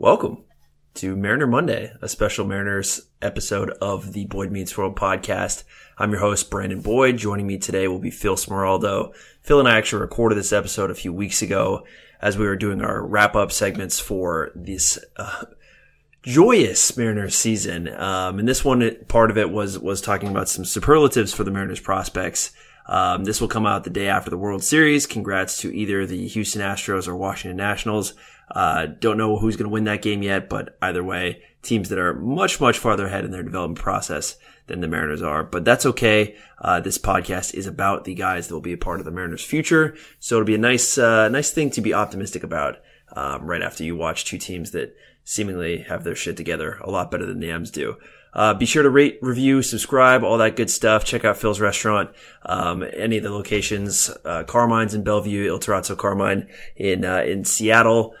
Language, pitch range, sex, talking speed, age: English, 95-115 Hz, male, 200 wpm, 20-39